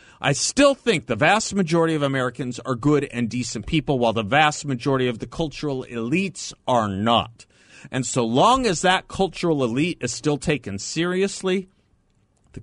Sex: male